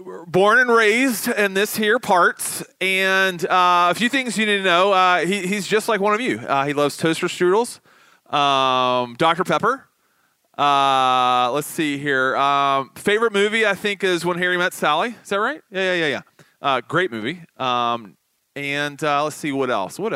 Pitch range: 140-190 Hz